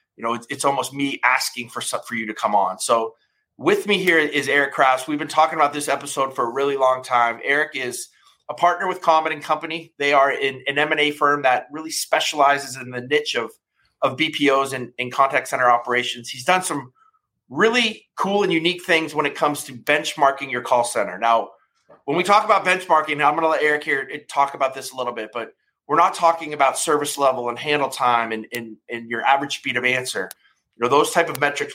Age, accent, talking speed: 30-49, American, 220 wpm